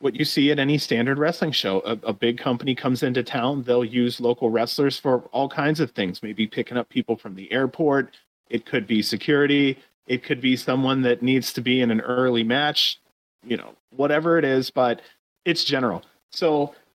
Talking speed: 200 wpm